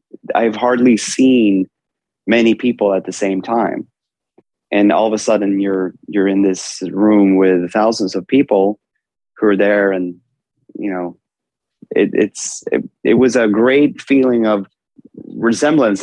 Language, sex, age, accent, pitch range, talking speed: German, male, 30-49, American, 95-115 Hz, 140 wpm